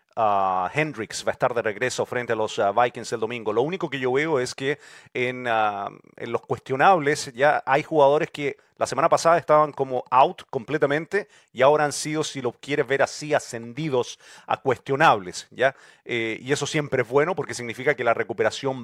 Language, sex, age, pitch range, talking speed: English, male, 40-59, 125-160 Hz, 195 wpm